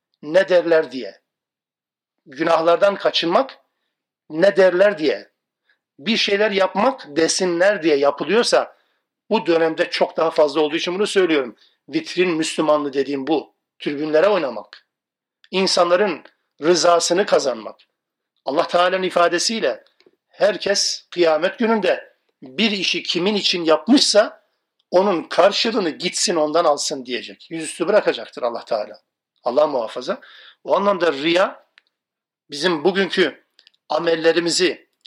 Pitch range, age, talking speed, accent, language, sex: 160-205 Hz, 50-69, 105 wpm, native, Turkish, male